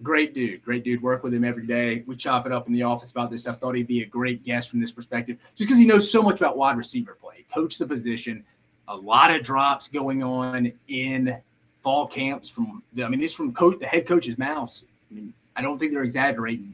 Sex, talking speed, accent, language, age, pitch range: male, 245 wpm, American, English, 30-49, 120-165 Hz